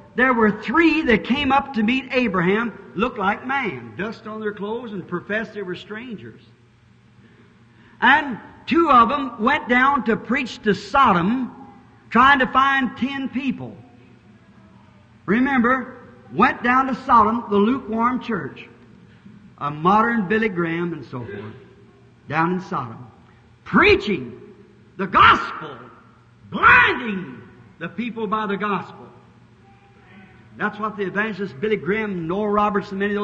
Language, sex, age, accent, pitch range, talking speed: English, male, 60-79, American, 180-245 Hz, 130 wpm